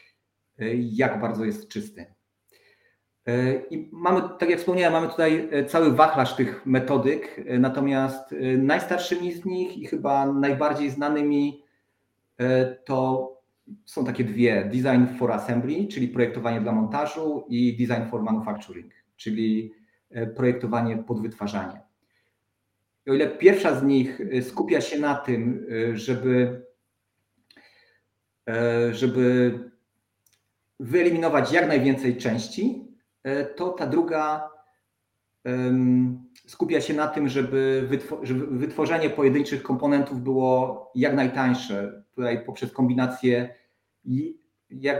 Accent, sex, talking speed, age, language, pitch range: native, male, 100 wpm, 40-59, Polish, 120-140 Hz